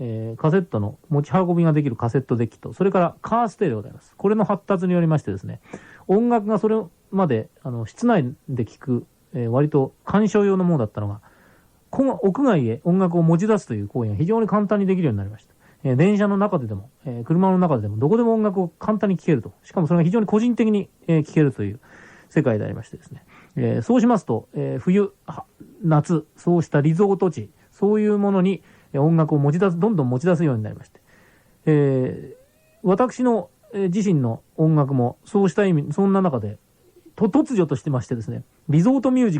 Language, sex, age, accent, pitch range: Japanese, male, 30-49, native, 130-200 Hz